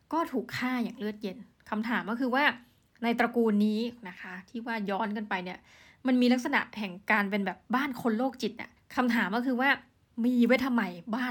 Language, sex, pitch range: Thai, female, 205-250 Hz